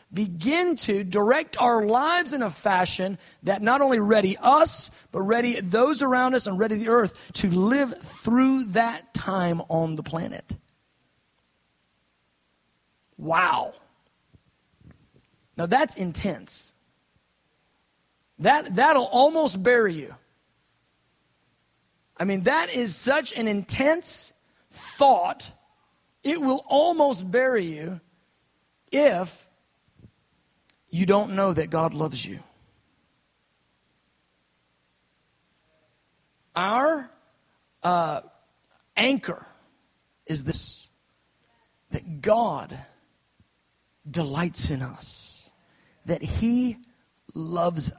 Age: 40-59